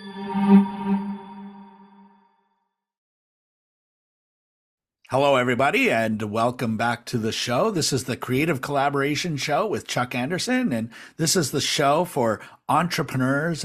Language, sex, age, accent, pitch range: English, male, 50-69, American, 120-145 Hz